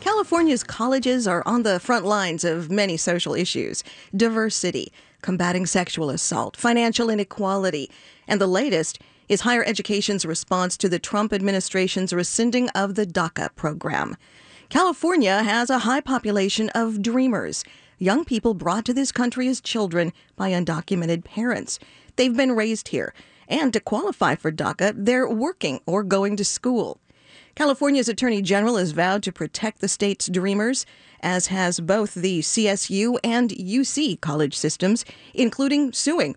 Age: 40-59